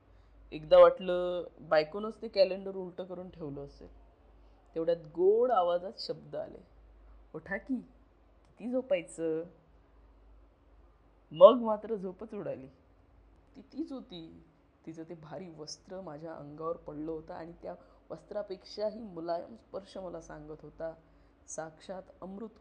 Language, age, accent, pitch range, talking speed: Hindi, 20-39, native, 145-190 Hz, 70 wpm